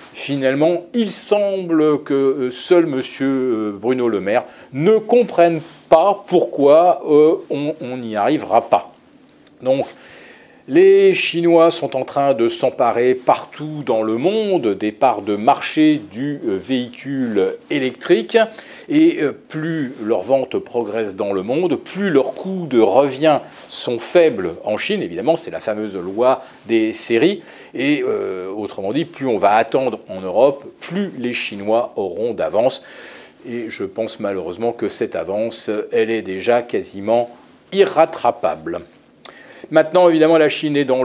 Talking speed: 135 wpm